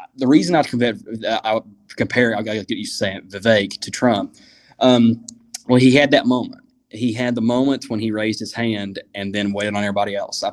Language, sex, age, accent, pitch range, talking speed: English, male, 20-39, American, 105-130 Hz, 205 wpm